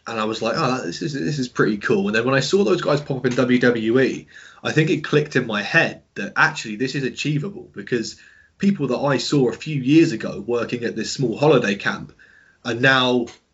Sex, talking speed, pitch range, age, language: male, 225 wpm, 110-135 Hz, 20-39, English